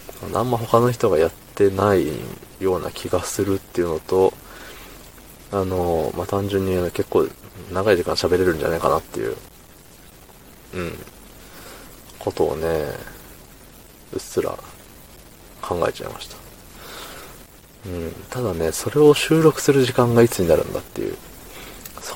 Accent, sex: native, male